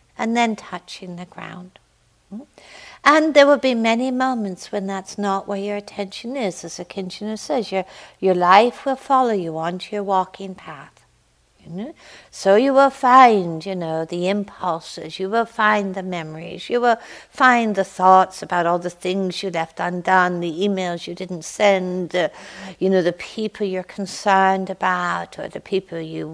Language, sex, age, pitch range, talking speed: English, female, 60-79, 180-220 Hz, 165 wpm